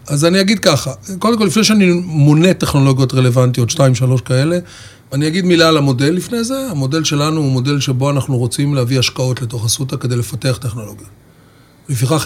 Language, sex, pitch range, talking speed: English, male, 125-155 Hz, 155 wpm